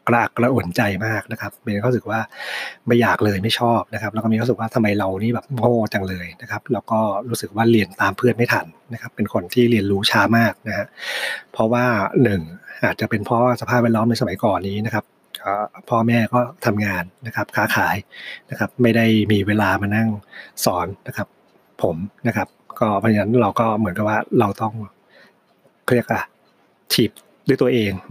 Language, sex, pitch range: Thai, male, 100-120 Hz